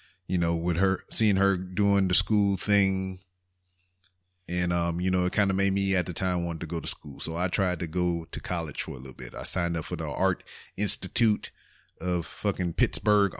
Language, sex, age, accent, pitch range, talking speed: English, male, 30-49, American, 85-100 Hz, 215 wpm